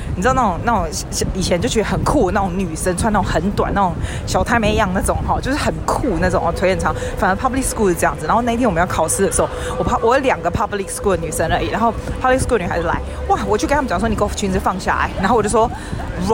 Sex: female